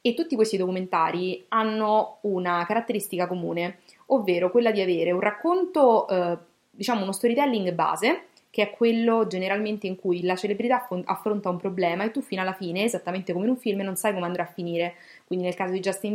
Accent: Italian